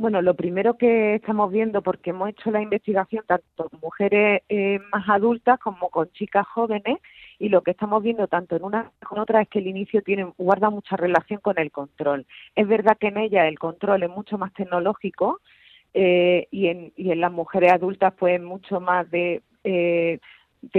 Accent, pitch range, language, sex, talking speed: Spanish, 180-210 Hz, Spanish, female, 195 wpm